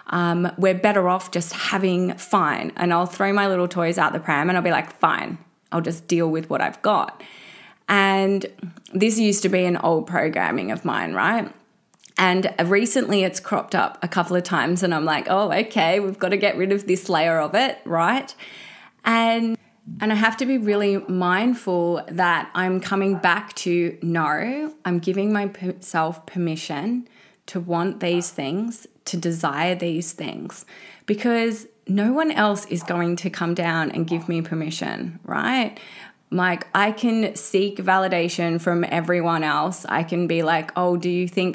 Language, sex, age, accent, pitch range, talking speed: English, female, 20-39, Australian, 170-200 Hz, 175 wpm